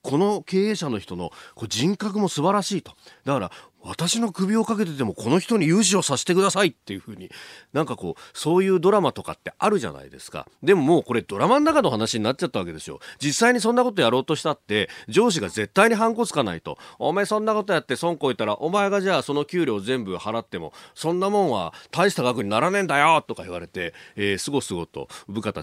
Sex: male